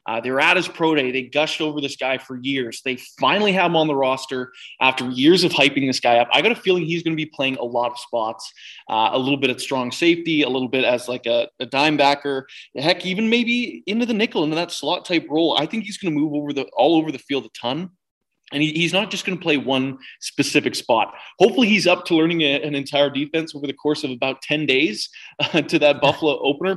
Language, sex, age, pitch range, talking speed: English, male, 20-39, 130-155 Hz, 250 wpm